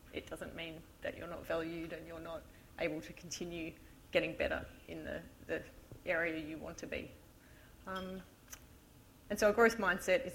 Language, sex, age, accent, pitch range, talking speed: English, female, 30-49, Australian, 170-200 Hz, 175 wpm